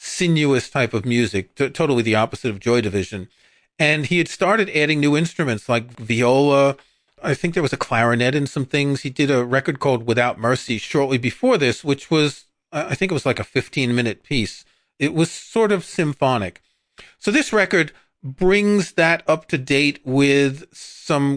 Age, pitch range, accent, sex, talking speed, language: 40-59, 120-160 Hz, American, male, 175 wpm, English